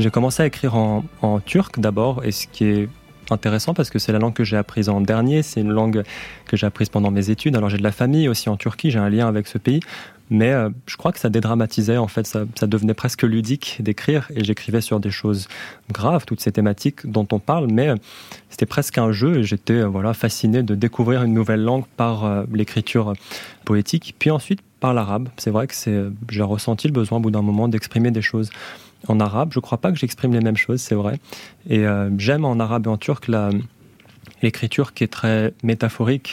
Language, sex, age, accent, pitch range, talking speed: French, male, 20-39, French, 105-125 Hz, 230 wpm